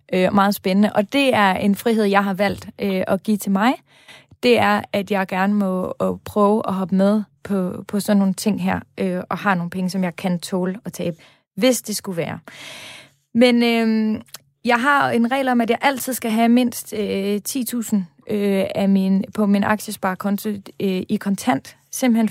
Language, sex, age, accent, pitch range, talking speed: Danish, female, 30-49, native, 195-230 Hz, 195 wpm